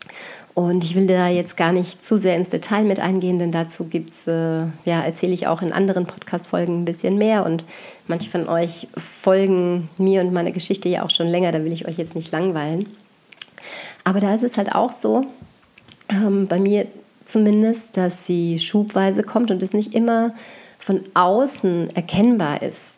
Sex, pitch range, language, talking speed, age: female, 170-210 Hz, German, 180 wpm, 30-49